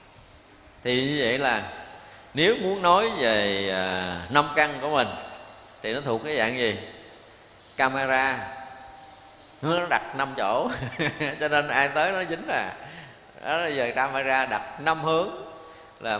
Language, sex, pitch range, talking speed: Vietnamese, male, 110-145 Hz, 140 wpm